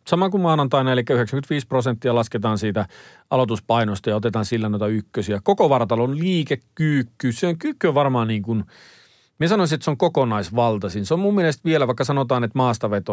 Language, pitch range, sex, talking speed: Finnish, 110-135 Hz, male, 175 wpm